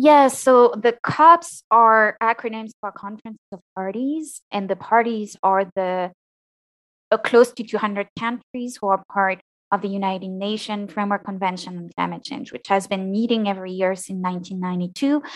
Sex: female